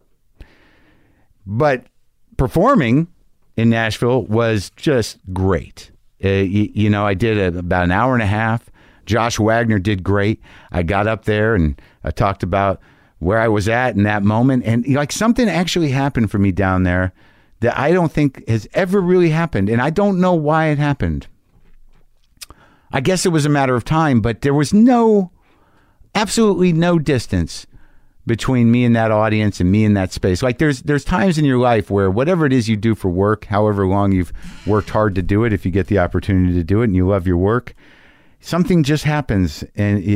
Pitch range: 100-140 Hz